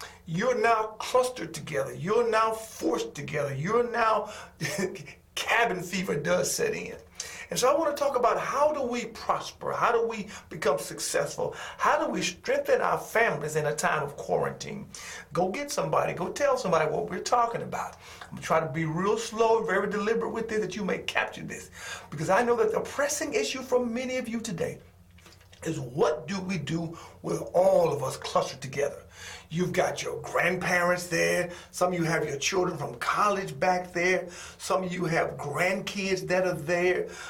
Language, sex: English, male